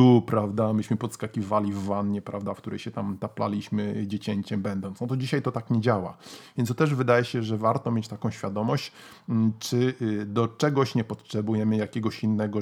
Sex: male